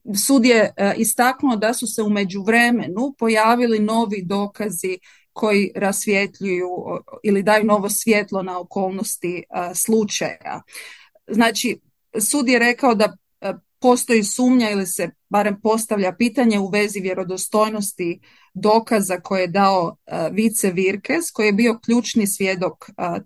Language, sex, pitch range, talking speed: Croatian, female, 190-230 Hz, 125 wpm